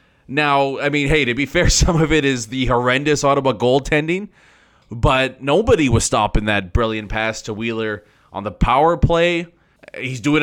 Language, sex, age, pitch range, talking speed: English, male, 20-39, 110-150 Hz, 175 wpm